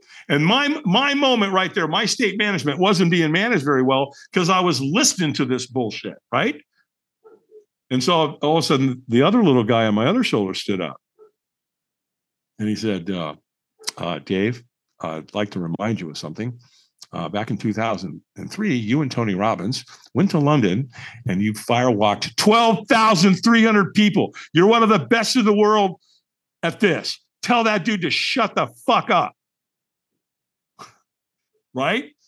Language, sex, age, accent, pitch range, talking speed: English, male, 50-69, American, 130-210 Hz, 160 wpm